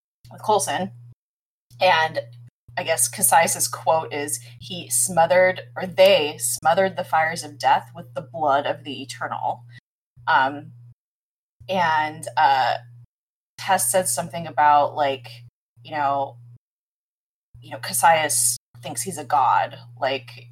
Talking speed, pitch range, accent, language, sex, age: 120 wpm, 130-165 Hz, American, English, female, 20-39